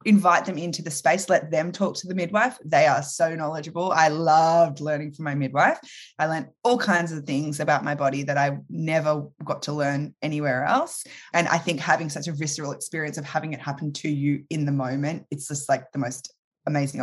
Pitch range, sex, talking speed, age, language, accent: 145-165 Hz, female, 215 wpm, 20-39, English, Australian